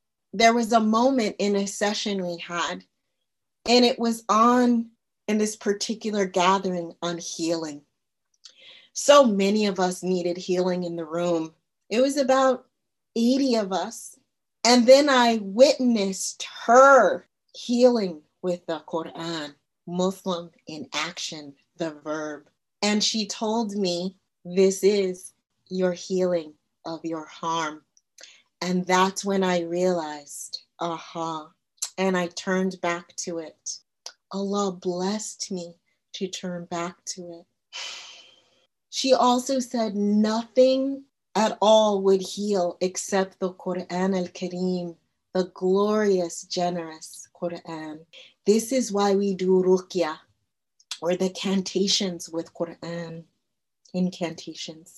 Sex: female